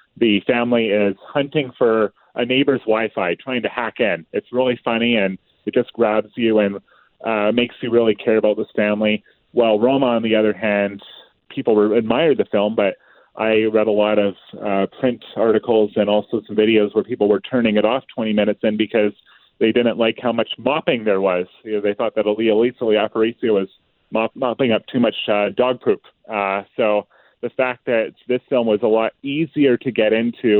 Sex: male